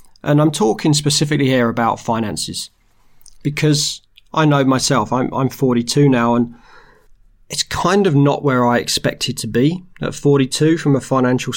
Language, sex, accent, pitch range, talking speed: English, male, British, 120-140 Hz, 155 wpm